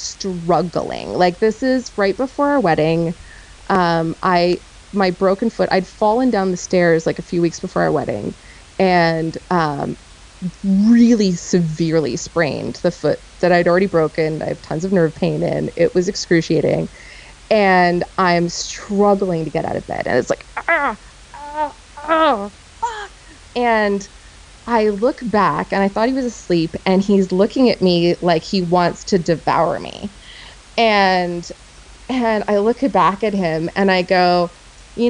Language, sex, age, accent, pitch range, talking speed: English, female, 20-39, American, 175-225 Hz, 160 wpm